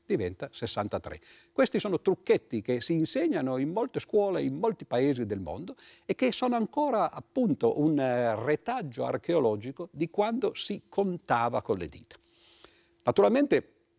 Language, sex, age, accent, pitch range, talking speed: Italian, male, 50-69, native, 115-160 Hz, 135 wpm